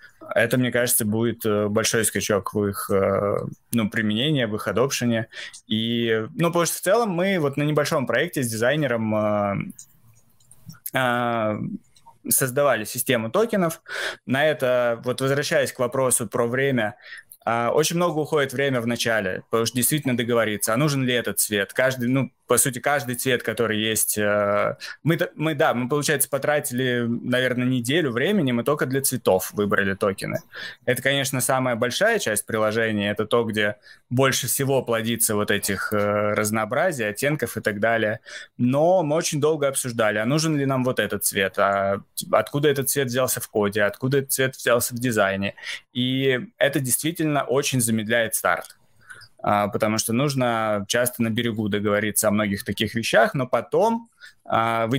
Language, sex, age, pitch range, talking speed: Russian, male, 20-39, 110-135 Hz, 150 wpm